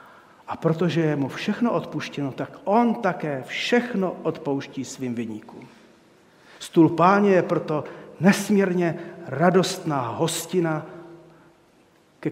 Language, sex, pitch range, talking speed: Czech, male, 150-185 Hz, 100 wpm